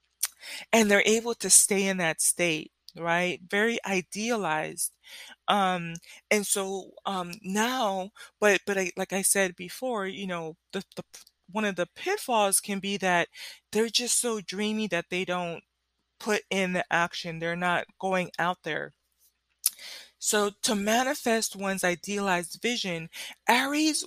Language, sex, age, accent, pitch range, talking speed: English, female, 20-39, American, 180-215 Hz, 140 wpm